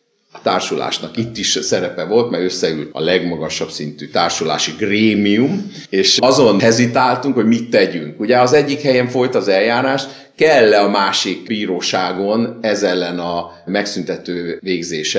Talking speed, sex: 135 wpm, male